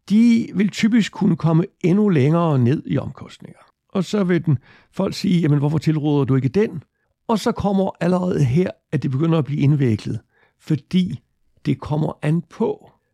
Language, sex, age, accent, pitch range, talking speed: Danish, male, 60-79, native, 150-200 Hz, 170 wpm